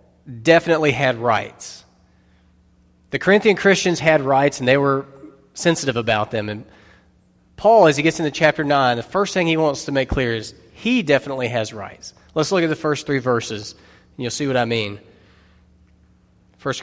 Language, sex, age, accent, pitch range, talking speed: English, male, 30-49, American, 105-175 Hz, 175 wpm